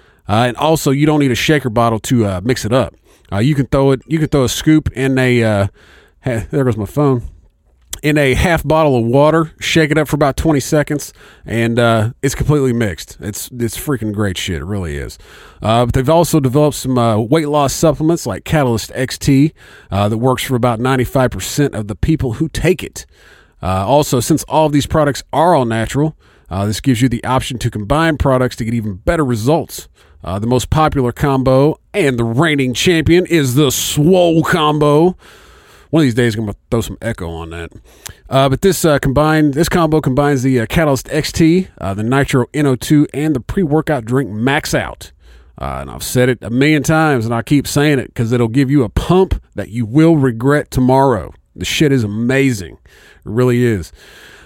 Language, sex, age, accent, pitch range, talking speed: English, male, 40-59, American, 115-150 Hz, 205 wpm